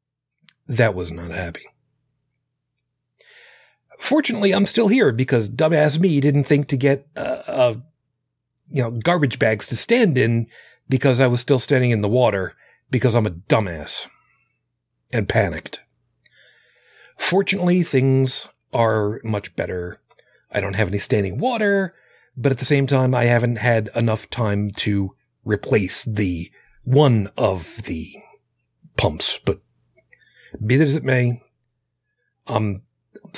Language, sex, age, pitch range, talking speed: English, male, 40-59, 105-145 Hz, 130 wpm